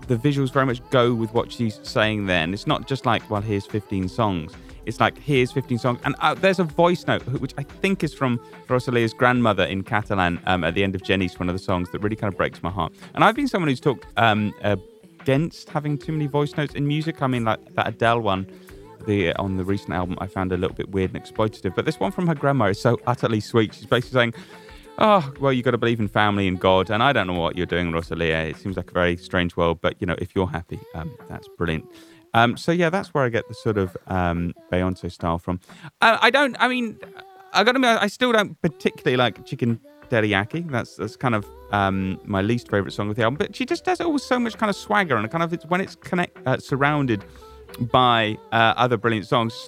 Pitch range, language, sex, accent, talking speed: 95-145 Hz, English, male, British, 245 wpm